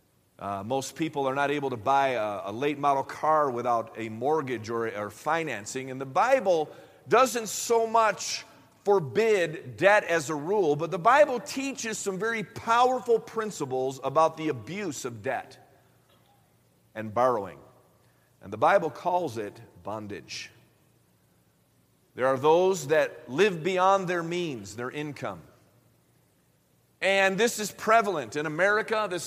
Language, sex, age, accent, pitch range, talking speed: English, male, 50-69, American, 160-215 Hz, 140 wpm